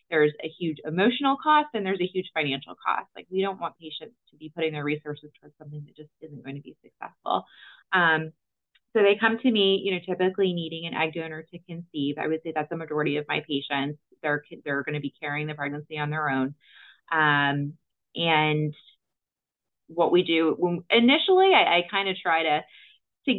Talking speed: 205 wpm